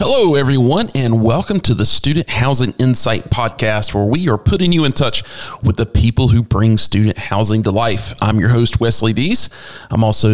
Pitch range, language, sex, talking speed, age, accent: 105-125 Hz, English, male, 190 wpm, 40-59, American